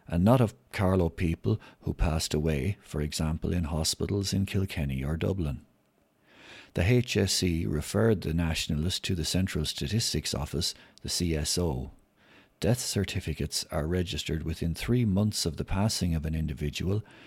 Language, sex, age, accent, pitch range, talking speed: English, male, 60-79, Irish, 80-100 Hz, 145 wpm